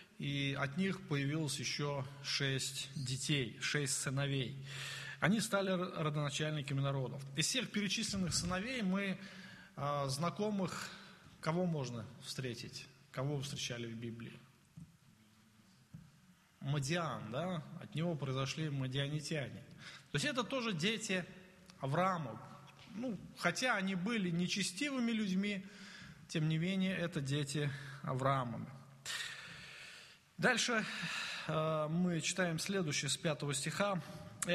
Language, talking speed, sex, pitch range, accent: Russian, 105 wpm, male, 140-185 Hz, native